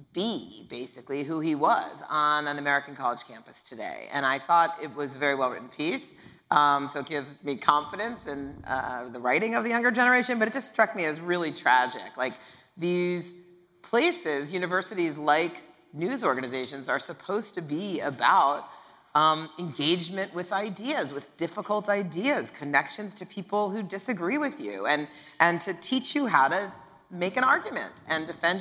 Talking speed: 170 wpm